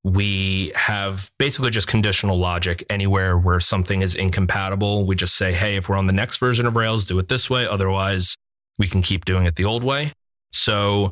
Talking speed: 200 wpm